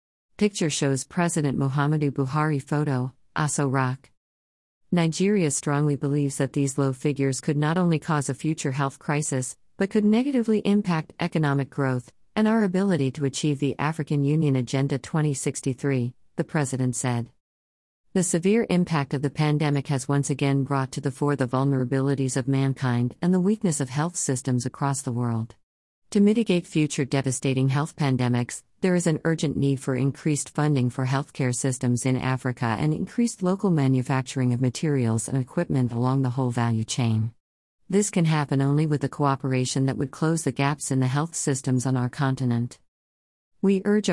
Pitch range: 130-155 Hz